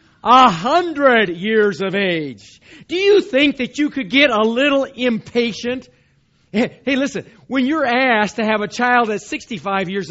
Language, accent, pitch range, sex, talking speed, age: English, American, 150-205 Hz, male, 160 wpm, 50-69